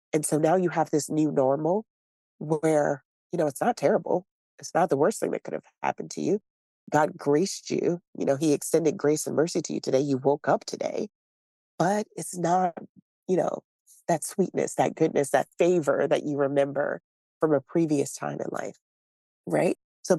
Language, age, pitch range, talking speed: English, 30-49, 140-175 Hz, 190 wpm